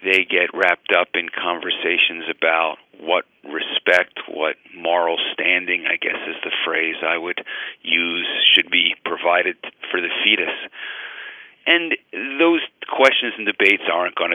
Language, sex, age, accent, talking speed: English, male, 50-69, American, 140 wpm